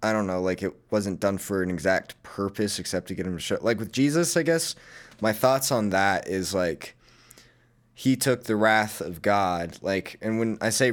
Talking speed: 215 wpm